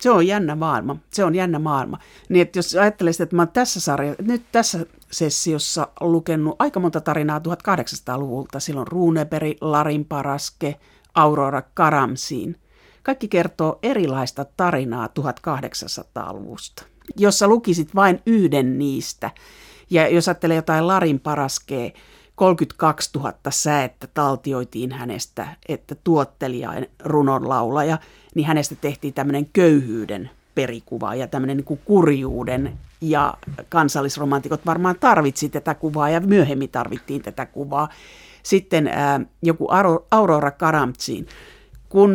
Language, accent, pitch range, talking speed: Finnish, native, 140-170 Hz, 120 wpm